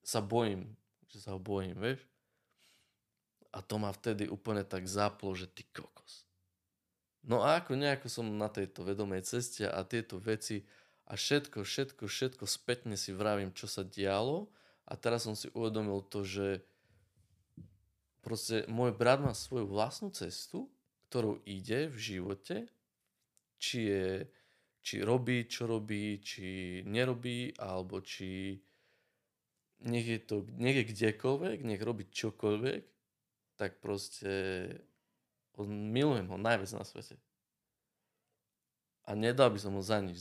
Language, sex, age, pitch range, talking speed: Slovak, male, 20-39, 95-115 Hz, 130 wpm